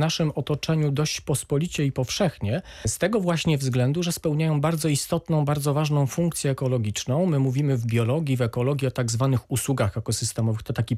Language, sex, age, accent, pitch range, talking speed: Polish, male, 40-59, native, 125-170 Hz, 175 wpm